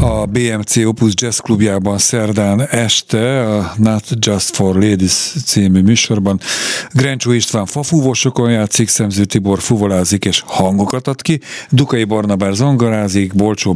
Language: Hungarian